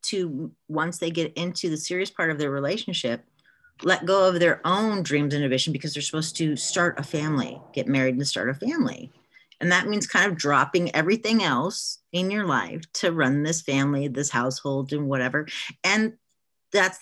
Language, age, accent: English, 30-49, American